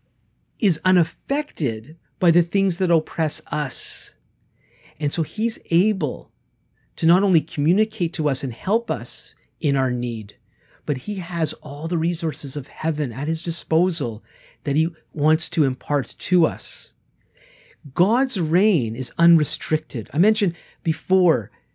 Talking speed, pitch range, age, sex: 135 wpm, 150-195 Hz, 40-59, male